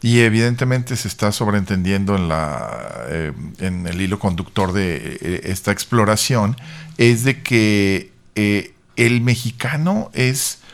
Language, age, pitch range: Spanish, 50-69, 100-120 Hz